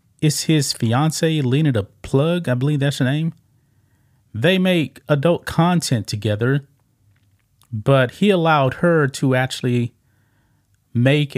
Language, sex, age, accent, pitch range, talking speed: English, male, 30-49, American, 110-150 Hz, 120 wpm